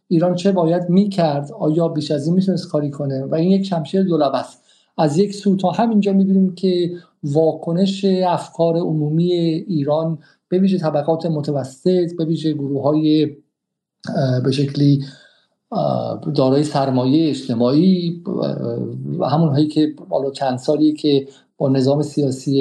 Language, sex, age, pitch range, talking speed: Persian, male, 50-69, 135-175 Hz, 125 wpm